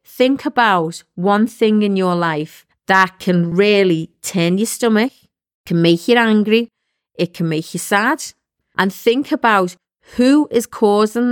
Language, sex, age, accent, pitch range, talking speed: English, female, 40-59, British, 180-230 Hz, 150 wpm